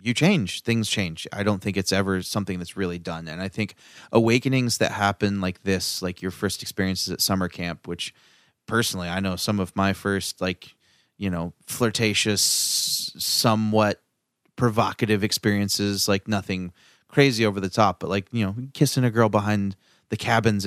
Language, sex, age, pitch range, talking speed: English, male, 30-49, 95-115 Hz, 170 wpm